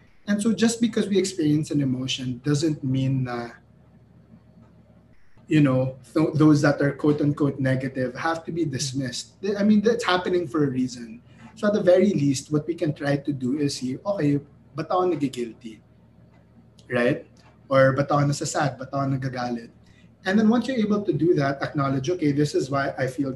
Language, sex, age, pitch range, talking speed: English, male, 20-39, 130-170 Hz, 175 wpm